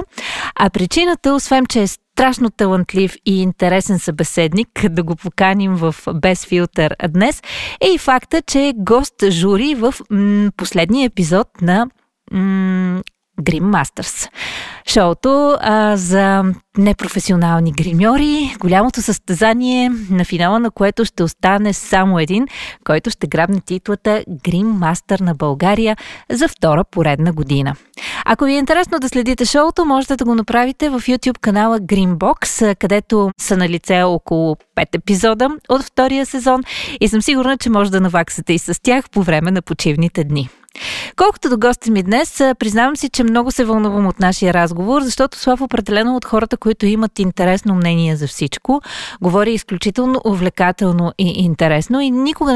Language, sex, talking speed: Bulgarian, female, 145 wpm